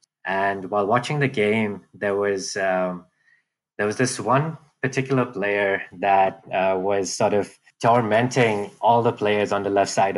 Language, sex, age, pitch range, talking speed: English, male, 20-39, 95-115 Hz, 160 wpm